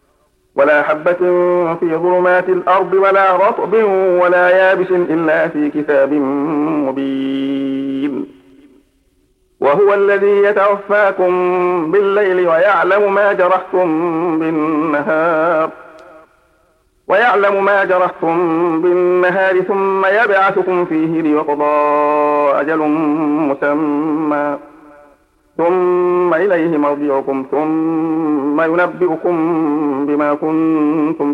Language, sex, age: Arabic, male, 50-69